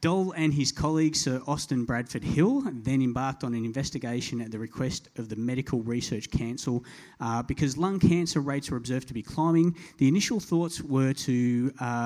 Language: English